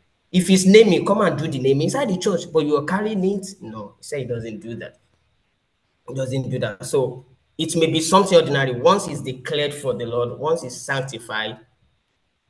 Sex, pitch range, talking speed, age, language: male, 115-150 Hz, 205 wpm, 20-39, English